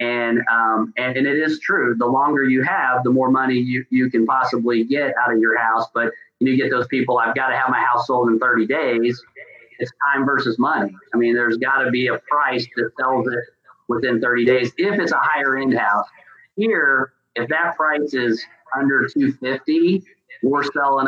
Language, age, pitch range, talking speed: English, 40-59, 120-140 Hz, 200 wpm